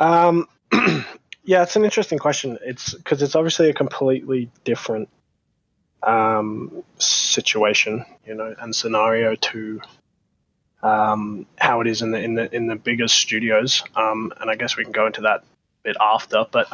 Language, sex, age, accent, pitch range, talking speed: English, male, 20-39, Australian, 115-140 Hz, 160 wpm